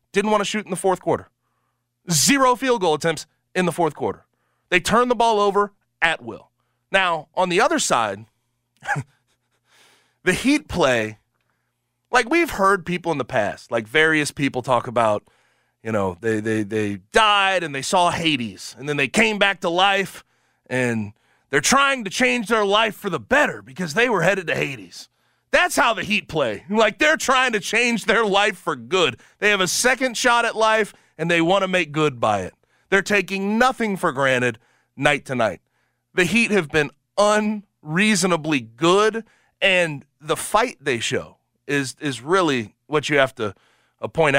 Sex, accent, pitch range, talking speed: male, American, 130-210 Hz, 180 wpm